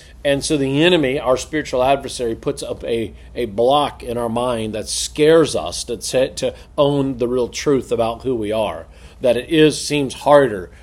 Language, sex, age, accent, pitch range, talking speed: English, male, 40-59, American, 120-150 Hz, 190 wpm